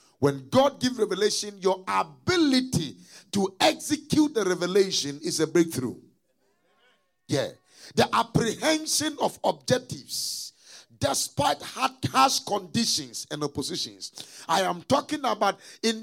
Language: English